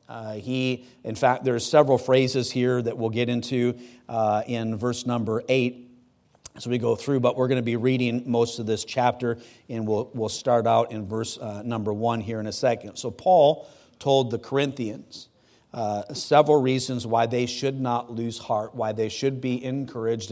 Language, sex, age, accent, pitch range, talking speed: English, male, 50-69, American, 115-125 Hz, 190 wpm